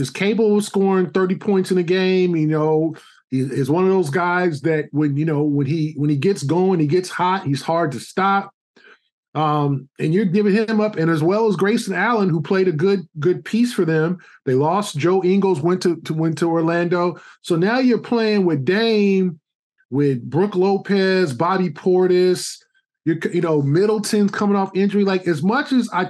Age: 20-39